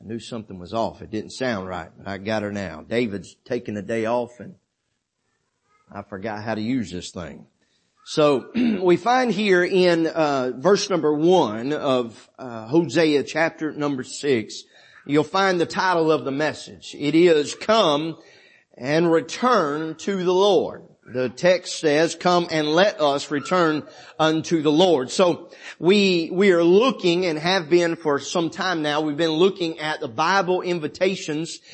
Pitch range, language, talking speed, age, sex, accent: 145-185 Hz, English, 165 wpm, 40-59, male, American